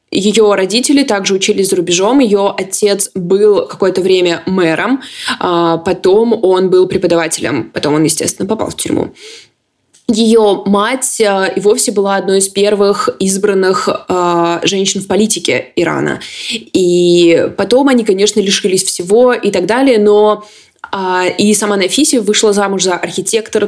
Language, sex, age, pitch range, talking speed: Russian, female, 20-39, 190-230 Hz, 130 wpm